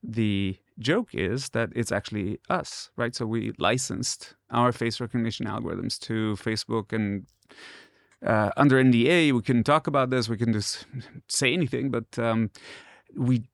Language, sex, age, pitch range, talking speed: Hebrew, male, 30-49, 105-125 Hz, 150 wpm